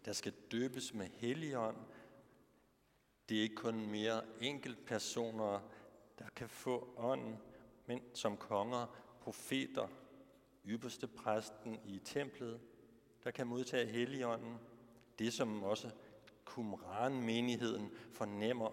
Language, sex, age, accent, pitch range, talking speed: Danish, male, 60-79, native, 110-130 Hz, 105 wpm